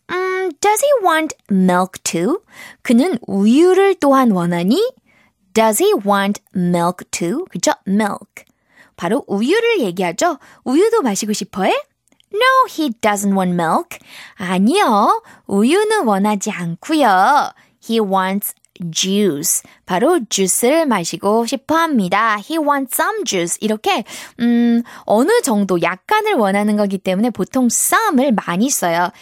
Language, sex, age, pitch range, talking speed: English, female, 20-39, 190-280 Hz, 110 wpm